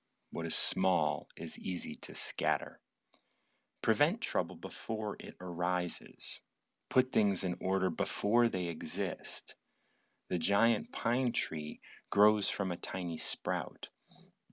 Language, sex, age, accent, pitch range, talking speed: English, male, 30-49, American, 90-115 Hz, 115 wpm